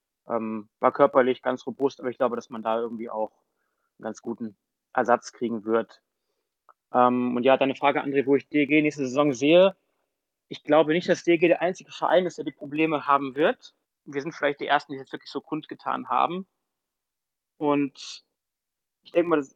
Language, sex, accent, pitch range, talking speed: German, male, German, 135-165 Hz, 185 wpm